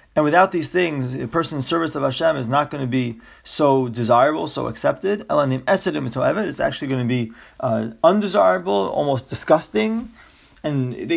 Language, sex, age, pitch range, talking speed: English, male, 30-49, 130-175 Hz, 175 wpm